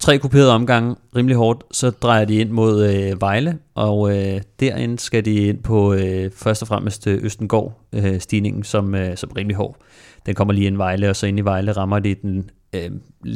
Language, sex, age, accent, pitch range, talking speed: Danish, male, 30-49, native, 100-110 Hz, 200 wpm